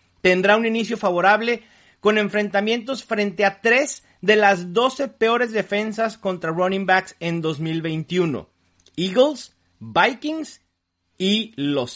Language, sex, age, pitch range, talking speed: English, male, 40-59, 160-225 Hz, 115 wpm